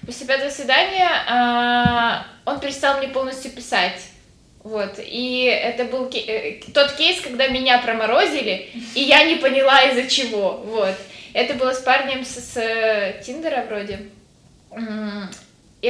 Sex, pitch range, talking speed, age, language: female, 220-260 Hz, 130 wpm, 20-39, Ukrainian